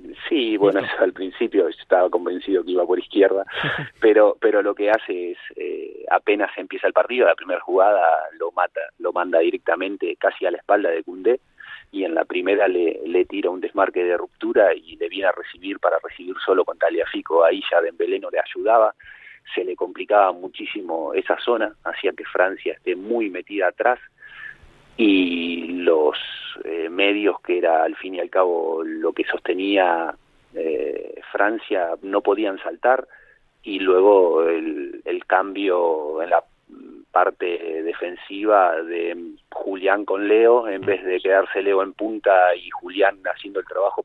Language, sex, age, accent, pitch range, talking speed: Spanish, male, 30-49, Argentinian, 315-440 Hz, 165 wpm